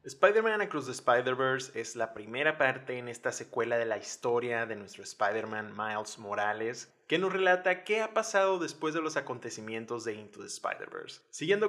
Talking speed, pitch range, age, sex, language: 175 wpm, 115-150 Hz, 20-39, male, Spanish